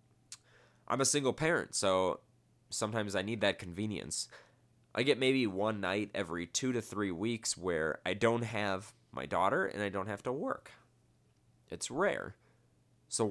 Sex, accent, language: male, American, English